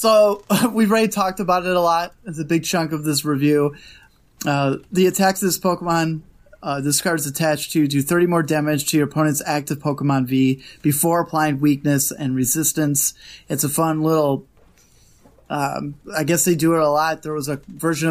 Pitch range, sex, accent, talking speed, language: 140-165 Hz, male, American, 190 wpm, English